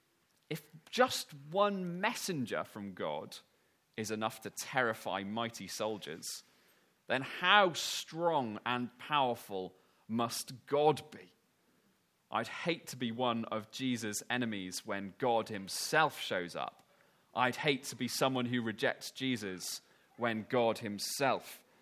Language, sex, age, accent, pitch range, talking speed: English, male, 30-49, British, 120-185 Hz, 120 wpm